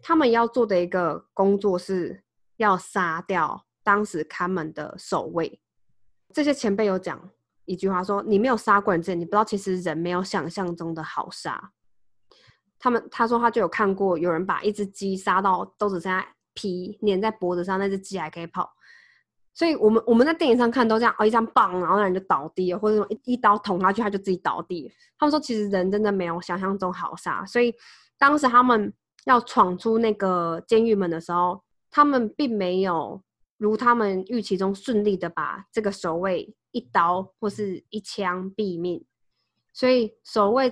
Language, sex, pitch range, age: Chinese, female, 180-220 Hz, 20-39